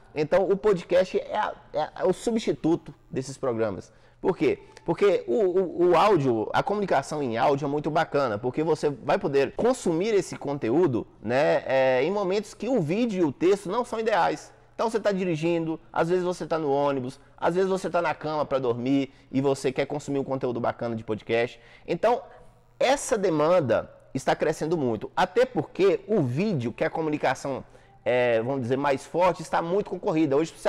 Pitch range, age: 135-195 Hz, 20-39